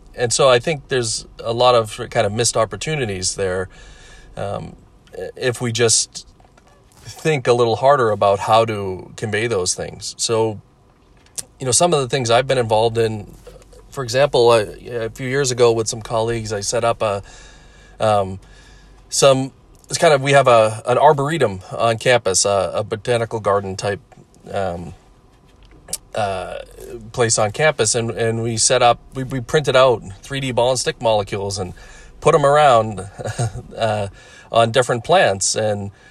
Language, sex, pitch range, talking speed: English, male, 105-125 Hz, 160 wpm